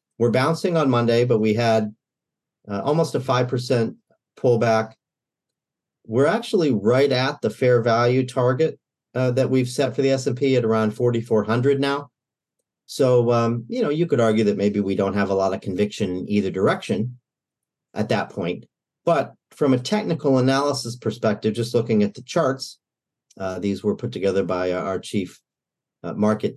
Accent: American